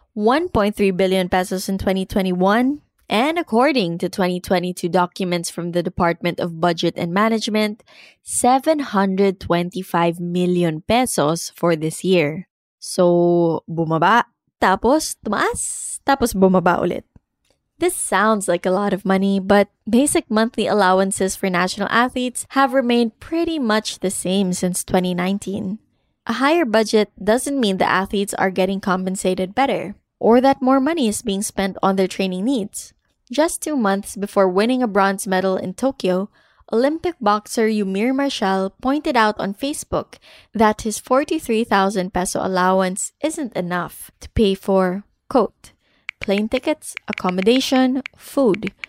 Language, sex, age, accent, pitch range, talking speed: English, female, 20-39, Filipino, 185-250 Hz, 130 wpm